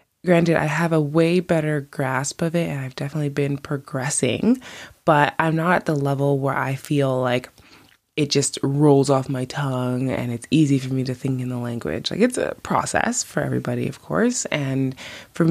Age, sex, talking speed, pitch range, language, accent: 20-39, female, 195 wpm, 135-170 Hz, English, American